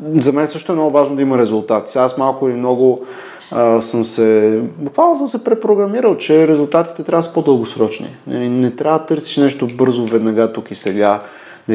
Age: 30-49